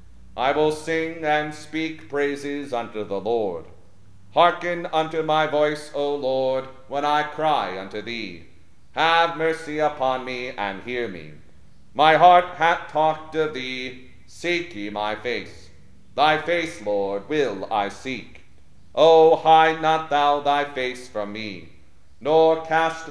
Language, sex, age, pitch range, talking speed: English, male, 50-69, 105-155 Hz, 140 wpm